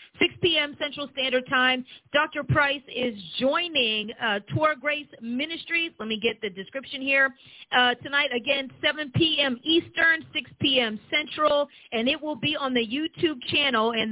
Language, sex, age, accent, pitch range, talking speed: English, female, 40-59, American, 215-275 Hz, 155 wpm